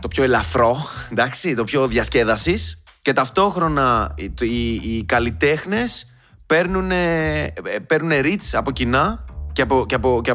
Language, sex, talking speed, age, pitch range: Greek, male, 130 wpm, 20-39, 110-135 Hz